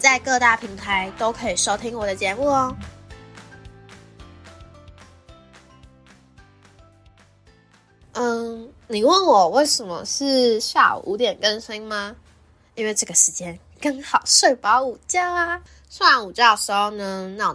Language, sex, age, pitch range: Chinese, female, 10-29, 185-245 Hz